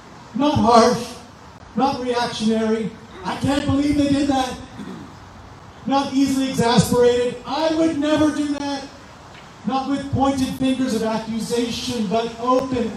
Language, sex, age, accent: English, male, 40-59, American